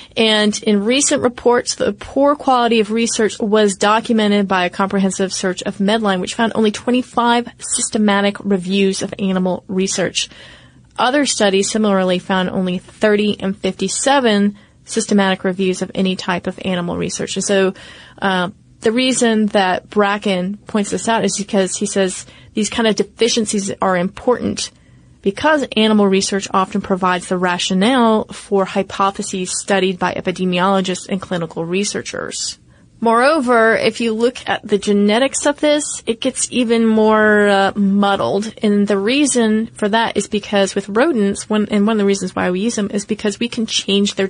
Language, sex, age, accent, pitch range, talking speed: English, female, 30-49, American, 195-225 Hz, 160 wpm